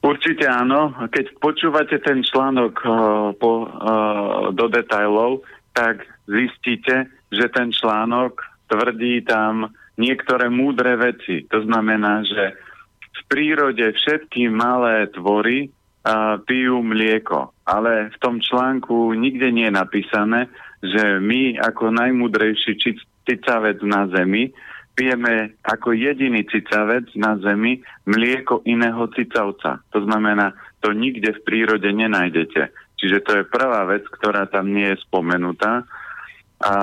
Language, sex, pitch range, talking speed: Slovak, male, 105-125 Hz, 120 wpm